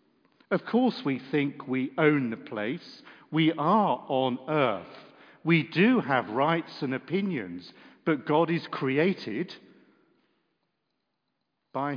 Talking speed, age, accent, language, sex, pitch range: 115 wpm, 50-69, British, English, male, 115-160 Hz